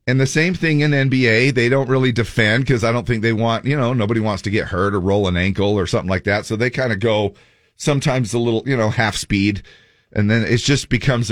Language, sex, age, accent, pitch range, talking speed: English, male, 40-59, American, 100-130 Hz, 255 wpm